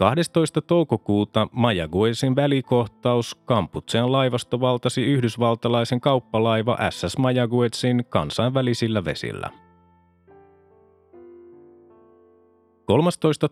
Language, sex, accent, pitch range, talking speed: Finnish, male, native, 100-130 Hz, 60 wpm